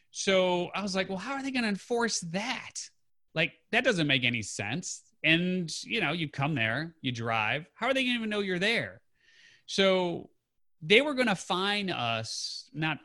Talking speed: 200 wpm